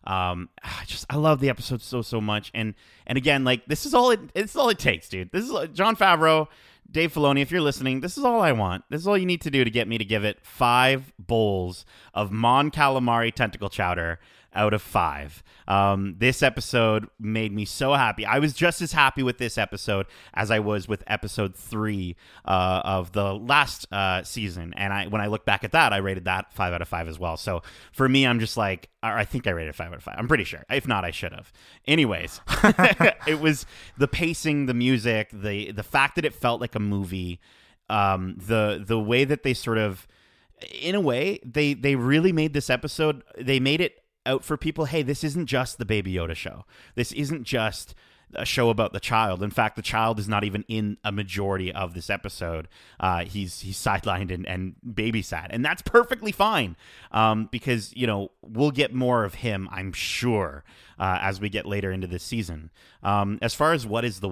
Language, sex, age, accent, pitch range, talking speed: English, male, 30-49, American, 95-130 Hz, 215 wpm